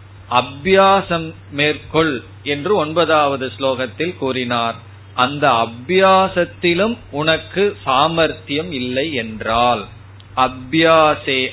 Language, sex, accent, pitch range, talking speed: Tamil, male, native, 115-155 Hz, 70 wpm